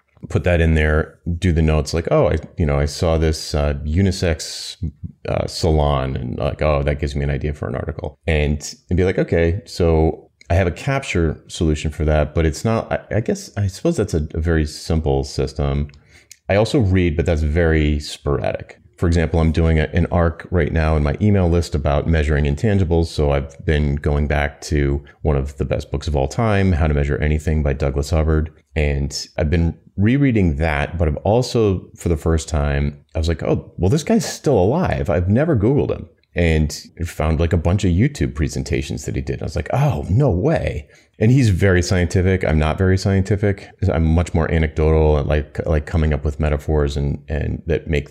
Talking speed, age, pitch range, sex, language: 205 wpm, 30-49, 75-90 Hz, male, English